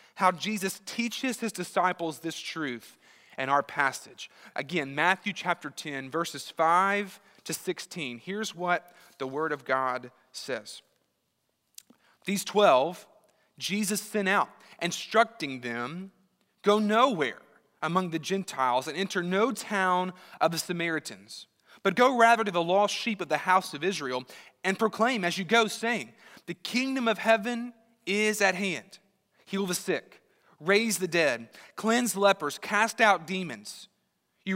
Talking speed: 140 wpm